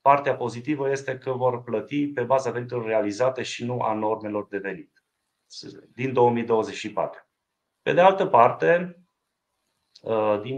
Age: 30-49